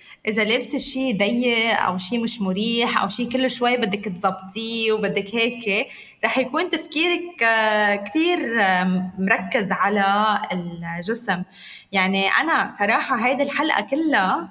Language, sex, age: Arabic, female, 20-39